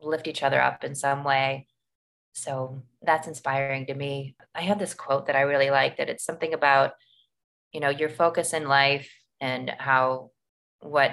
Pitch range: 135-150 Hz